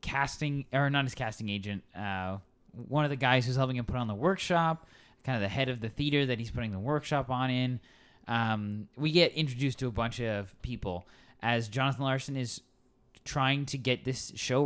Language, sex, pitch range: English, male, 105-135 Hz